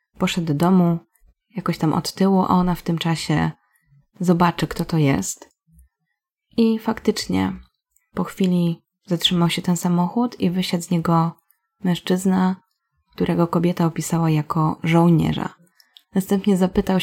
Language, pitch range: Polish, 165-190 Hz